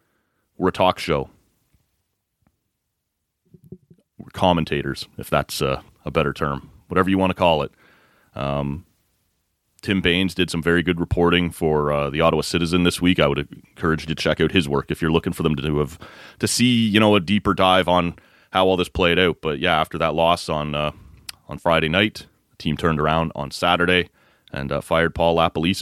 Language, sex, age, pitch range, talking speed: English, male, 30-49, 80-95 Hz, 190 wpm